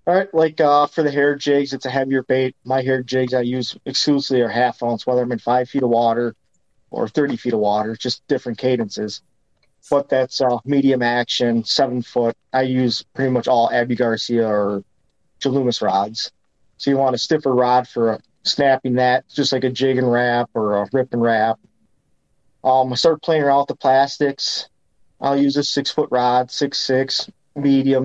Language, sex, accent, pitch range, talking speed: English, male, American, 115-135 Hz, 185 wpm